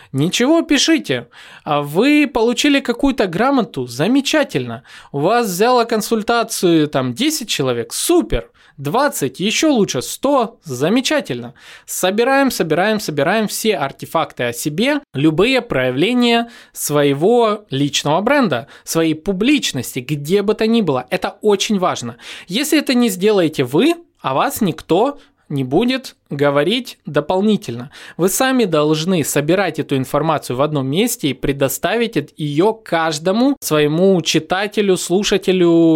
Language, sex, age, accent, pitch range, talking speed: Russian, male, 20-39, native, 145-230 Hz, 120 wpm